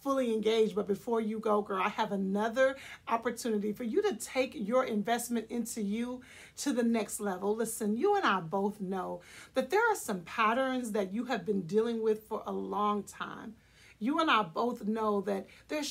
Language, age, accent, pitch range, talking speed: English, 50-69, American, 210-250 Hz, 190 wpm